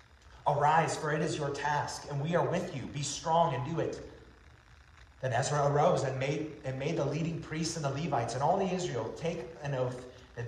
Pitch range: 125-155 Hz